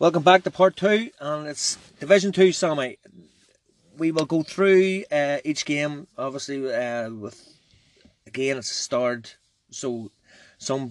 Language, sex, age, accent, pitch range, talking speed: English, male, 30-49, Irish, 115-135 Hz, 145 wpm